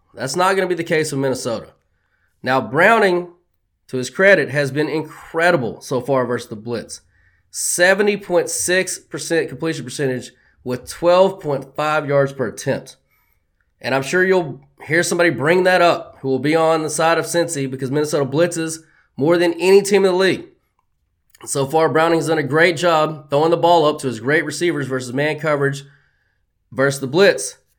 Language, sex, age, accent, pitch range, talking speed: English, male, 20-39, American, 135-180 Hz, 170 wpm